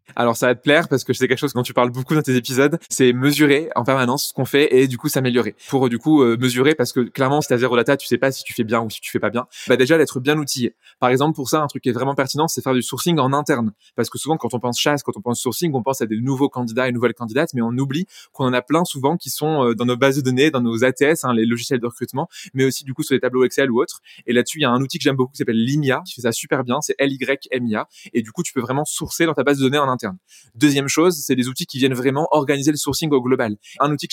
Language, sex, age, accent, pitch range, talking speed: French, male, 20-39, French, 125-150 Hz, 315 wpm